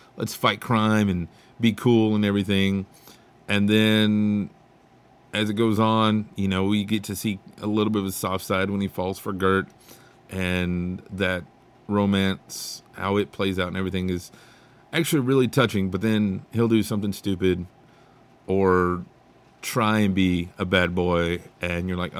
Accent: American